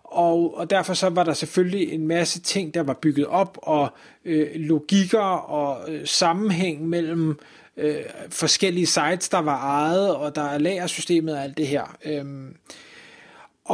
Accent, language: native, Danish